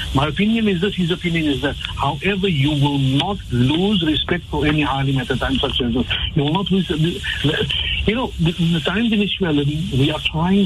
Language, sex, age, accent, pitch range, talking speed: English, male, 60-79, Indian, 145-190 Hz, 205 wpm